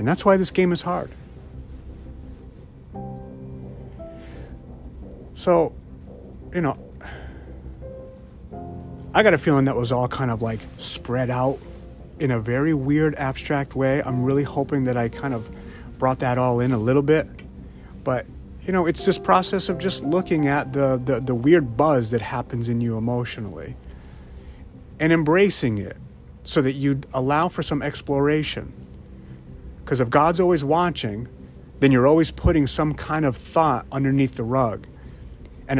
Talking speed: 150 wpm